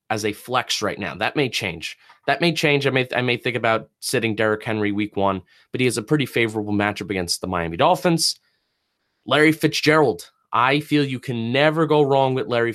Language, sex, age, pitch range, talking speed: English, male, 20-39, 110-145 Hz, 205 wpm